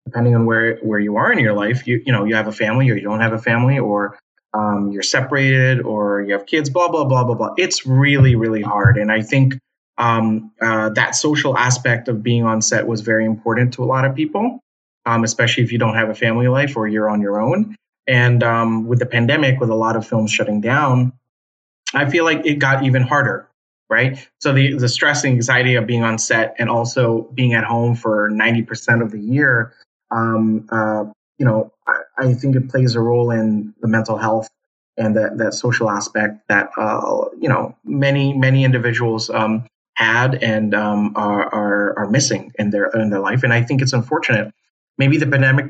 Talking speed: 215 wpm